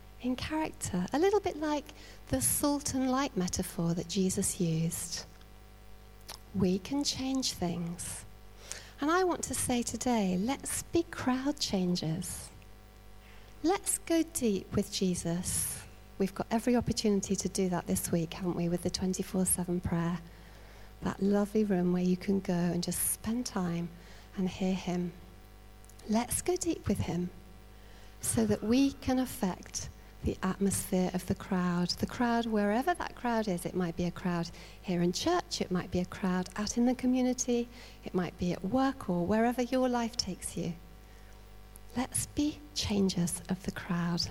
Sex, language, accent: female, English, British